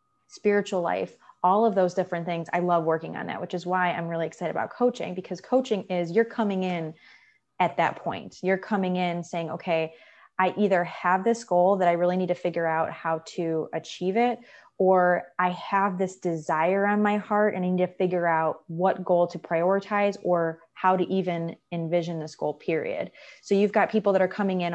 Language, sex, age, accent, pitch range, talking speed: English, female, 20-39, American, 165-195 Hz, 205 wpm